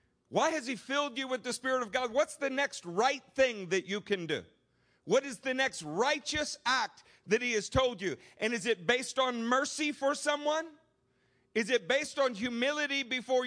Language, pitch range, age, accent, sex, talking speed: English, 200-275 Hz, 50-69, American, male, 195 wpm